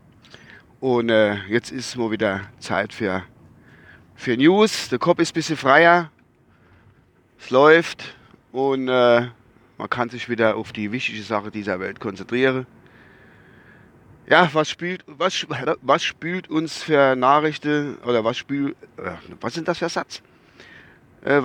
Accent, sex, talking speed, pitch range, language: German, male, 145 wpm, 115-160 Hz, German